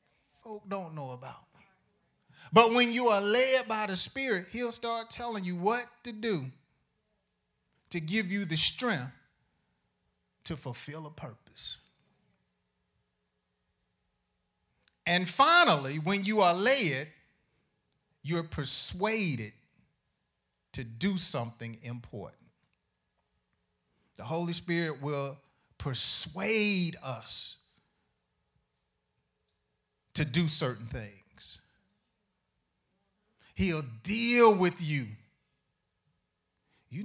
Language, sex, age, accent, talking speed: English, male, 30-49, American, 85 wpm